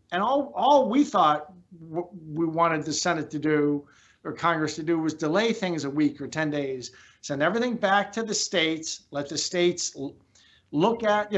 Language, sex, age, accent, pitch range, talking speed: English, male, 50-69, American, 155-200 Hz, 195 wpm